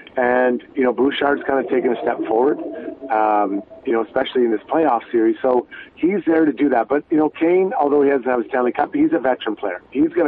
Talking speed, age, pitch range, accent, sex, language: 240 wpm, 40-59, 125-170 Hz, American, male, English